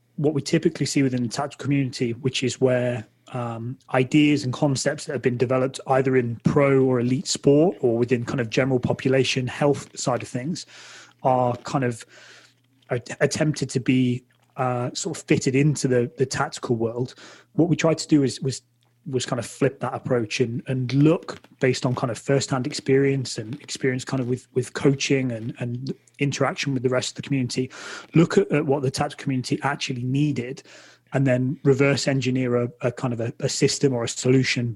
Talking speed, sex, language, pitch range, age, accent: 195 wpm, male, English, 125-145 Hz, 20-39, British